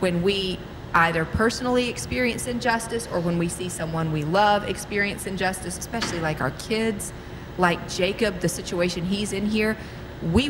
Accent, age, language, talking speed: American, 40-59, English, 155 wpm